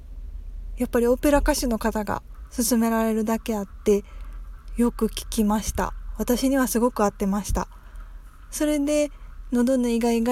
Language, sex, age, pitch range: Japanese, female, 20-39, 205-255 Hz